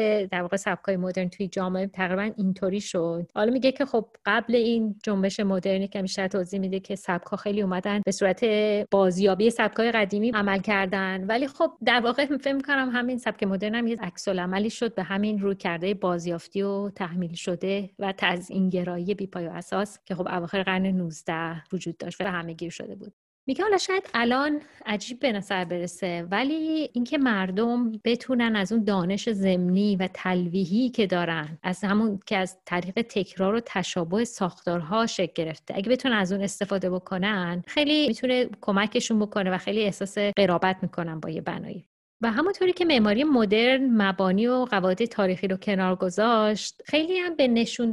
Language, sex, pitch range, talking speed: Persian, female, 185-235 Hz, 170 wpm